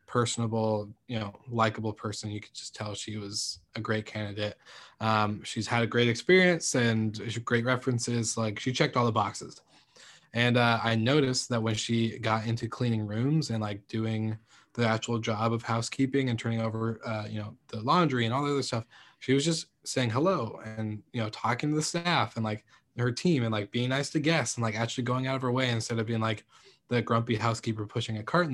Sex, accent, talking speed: male, American, 215 wpm